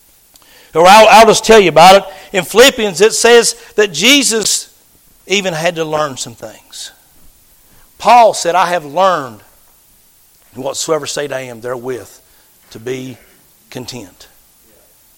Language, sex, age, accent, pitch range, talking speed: English, male, 60-79, American, 155-250 Hz, 125 wpm